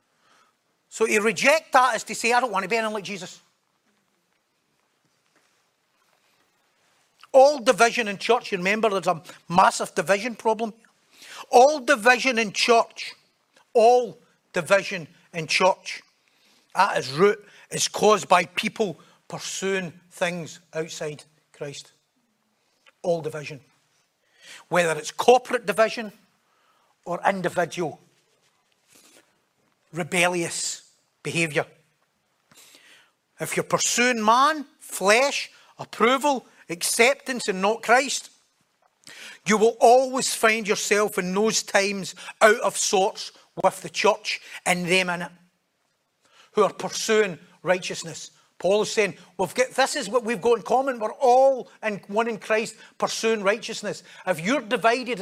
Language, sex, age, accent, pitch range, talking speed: English, male, 60-79, British, 180-235 Hz, 120 wpm